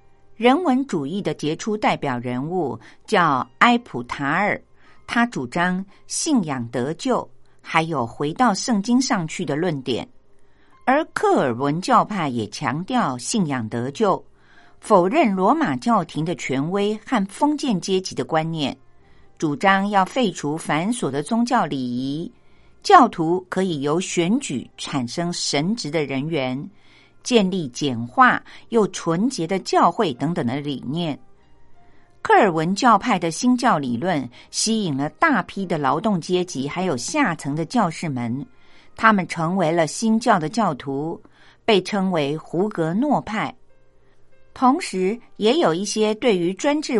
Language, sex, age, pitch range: Chinese, female, 50-69, 140-220 Hz